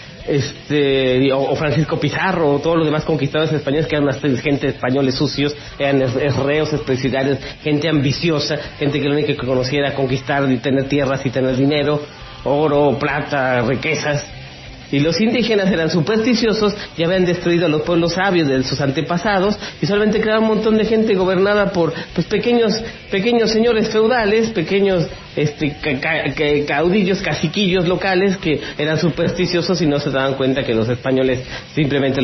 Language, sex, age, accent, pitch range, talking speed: English, male, 40-59, Mexican, 140-195 Hz, 155 wpm